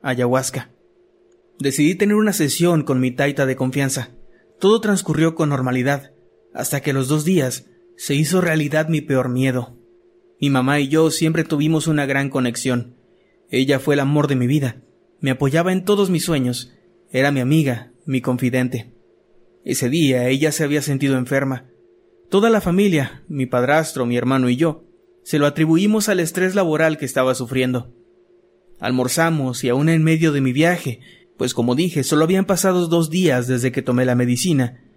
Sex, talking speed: male, 170 wpm